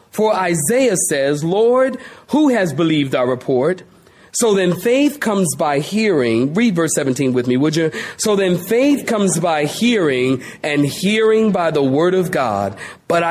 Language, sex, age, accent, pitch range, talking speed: English, male, 40-59, American, 150-210 Hz, 160 wpm